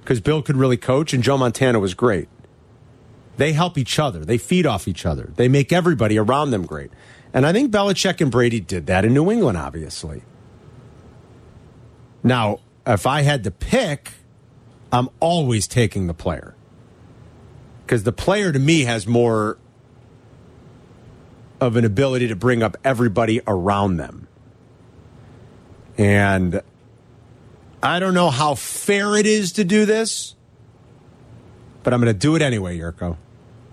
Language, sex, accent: English, male, American